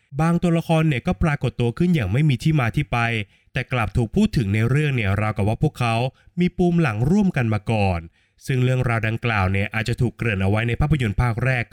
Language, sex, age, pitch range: Thai, male, 20-39, 110-155 Hz